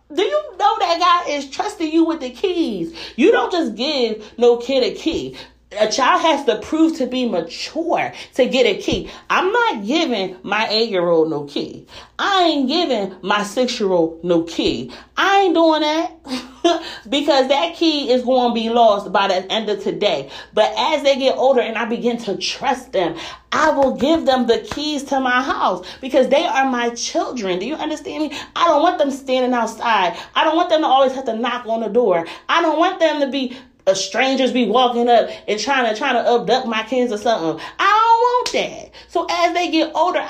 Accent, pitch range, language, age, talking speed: American, 220-320 Hz, English, 40-59, 215 wpm